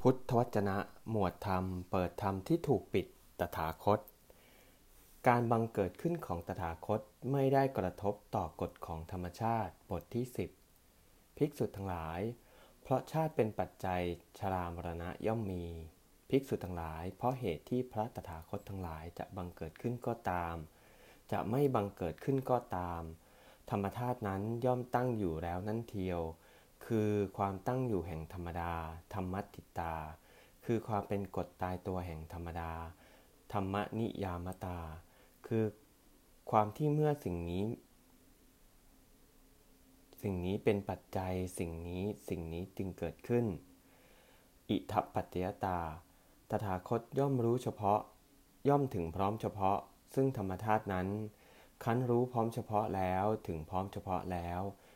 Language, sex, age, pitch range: English, male, 20-39, 90-115 Hz